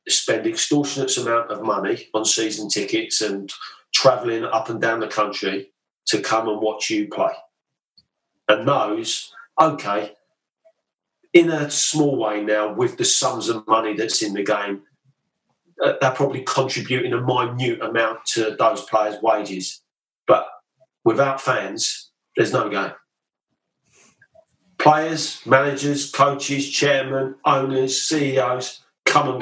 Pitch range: 105-155 Hz